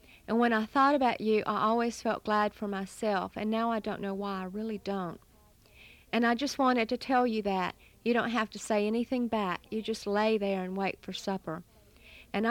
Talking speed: 215 wpm